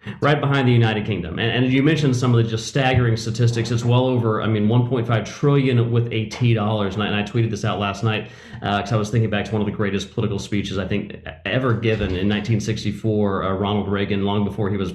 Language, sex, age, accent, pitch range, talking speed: English, male, 40-59, American, 110-150 Hz, 235 wpm